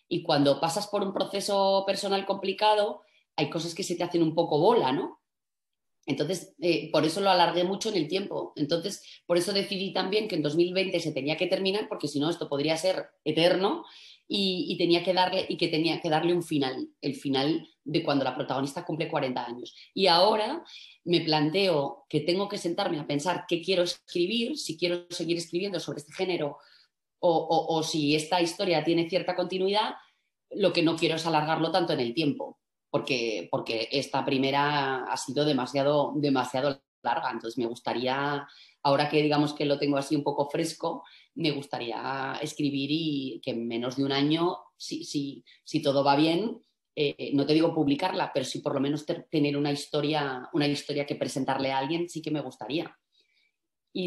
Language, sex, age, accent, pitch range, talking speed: Spanish, female, 30-49, Spanish, 145-180 Hz, 190 wpm